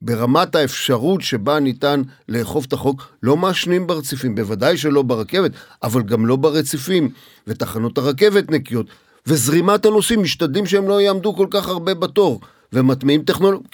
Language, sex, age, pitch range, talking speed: Hebrew, male, 50-69, 130-180 Hz, 140 wpm